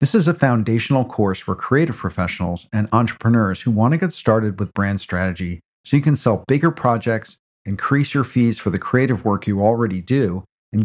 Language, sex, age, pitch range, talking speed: English, male, 50-69, 100-125 Hz, 190 wpm